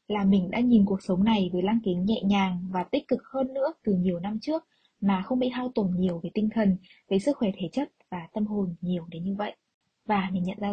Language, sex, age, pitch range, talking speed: Vietnamese, female, 20-39, 190-245 Hz, 255 wpm